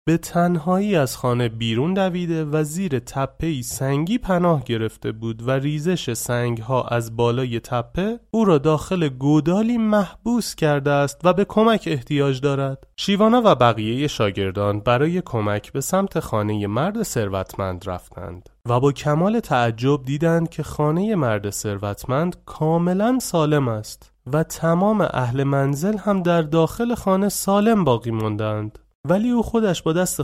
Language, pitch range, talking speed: Persian, 115-170 Hz, 140 wpm